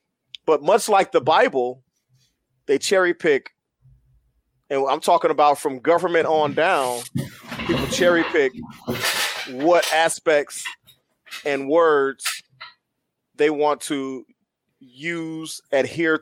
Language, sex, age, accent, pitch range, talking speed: English, male, 30-49, American, 135-170 Hz, 105 wpm